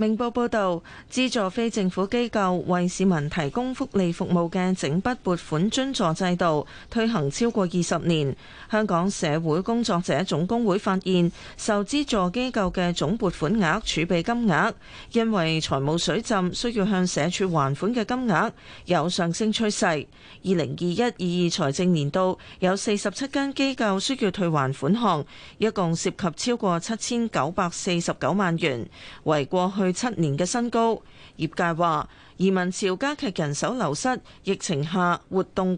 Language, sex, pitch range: Chinese, female, 170-215 Hz